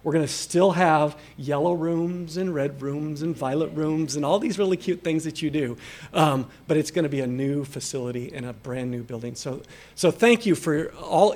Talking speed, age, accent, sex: 210 wpm, 40-59, American, male